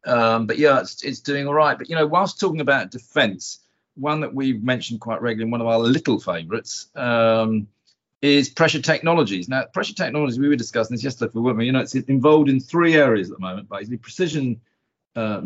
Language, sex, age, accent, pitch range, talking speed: English, male, 40-59, British, 105-135 Hz, 205 wpm